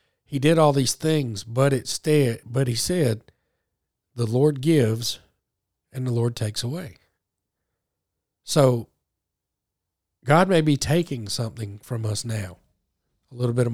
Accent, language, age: American, English, 40-59